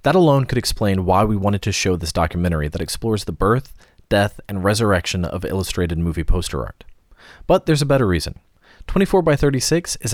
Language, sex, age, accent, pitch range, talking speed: English, male, 30-49, American, 90-130 Hz, 190 wpm